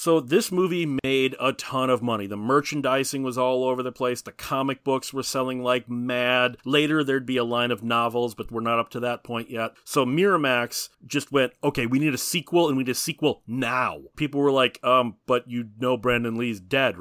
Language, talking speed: English, 220 wpm